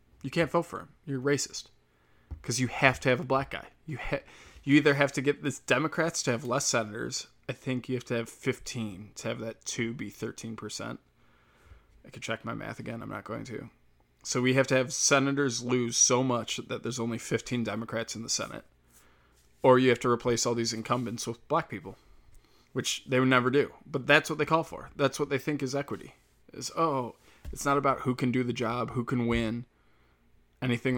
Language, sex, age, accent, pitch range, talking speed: English, male, 20-39, American, 115-145 Hz, 215 wpm